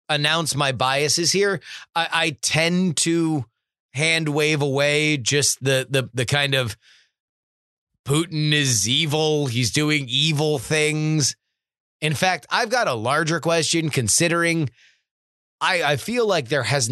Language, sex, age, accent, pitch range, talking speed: English, male, 30-49, American, 130-155 Hz, 135 wpm